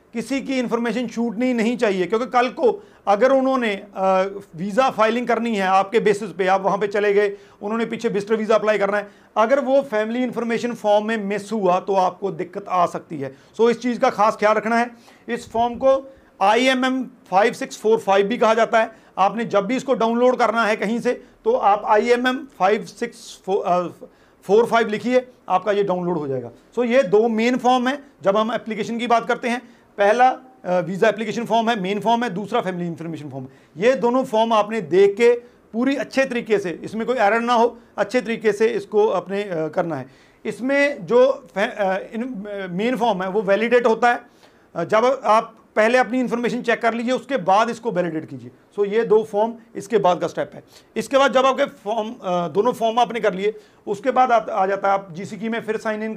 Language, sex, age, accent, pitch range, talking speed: Hindi, male, 40-59, native, 200-240 Hz, 195 wpm